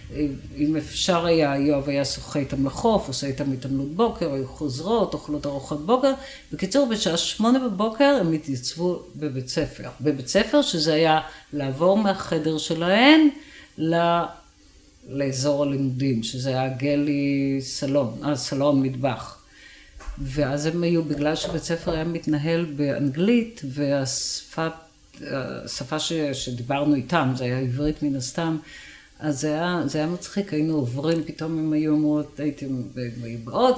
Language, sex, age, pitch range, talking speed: Hebrew, female, 50-69, 140-180 Hz, 130 wpm